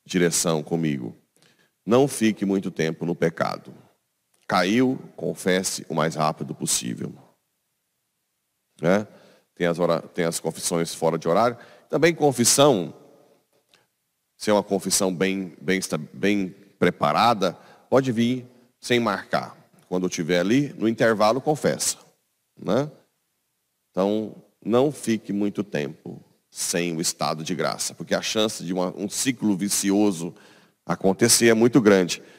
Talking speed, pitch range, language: 120 wpm, 90-120 Hz, Portuguese